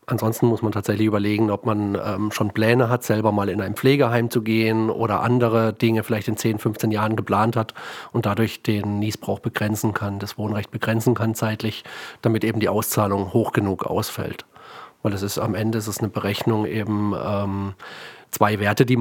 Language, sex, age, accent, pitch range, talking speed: German, male, 40-59, German, 105-115 Hz, 190 wpm